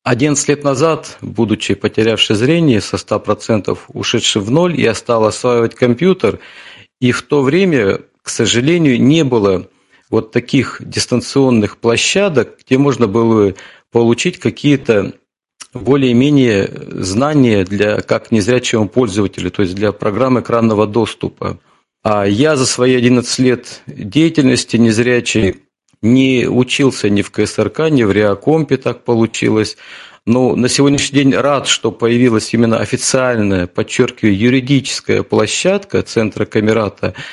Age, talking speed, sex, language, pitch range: 40-59, 120 wpm, male, Russian, 110-135 Hz